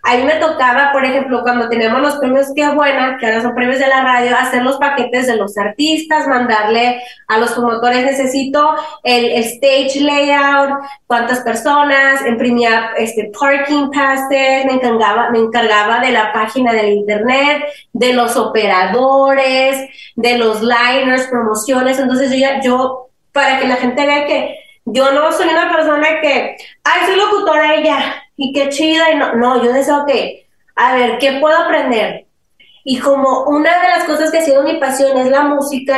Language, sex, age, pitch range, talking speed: Spanish, female, 20-39, 240-290 Hz, 175 wpm